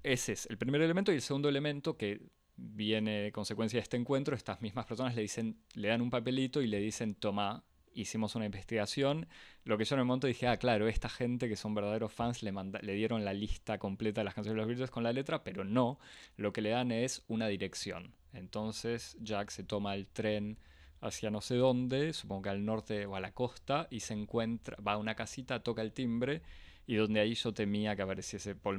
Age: 20-39